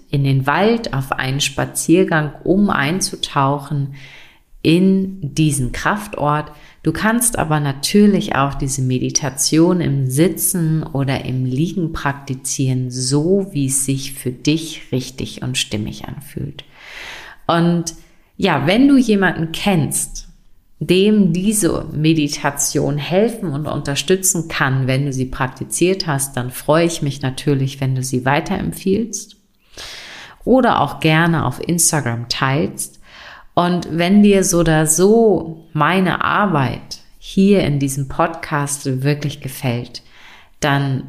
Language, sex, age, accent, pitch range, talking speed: German, female, 40-59, German, 135-170 Hz, 120 wpm